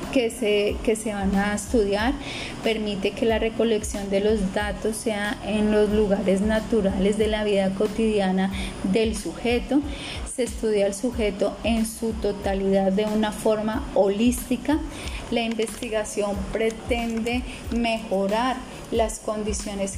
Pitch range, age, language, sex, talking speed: 205-225 Hz, 30-49, Spanish, female, 125 wpm